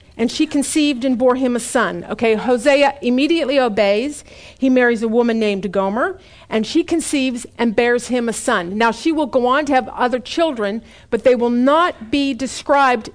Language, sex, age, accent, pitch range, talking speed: English, female, 50-69, American, 220-280 Hz, 185 wpm